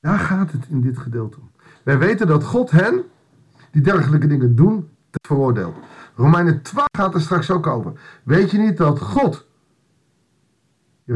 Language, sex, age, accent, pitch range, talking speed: Dutch, male, 50-69, Dutch, 135-175 Hz, 160 wpm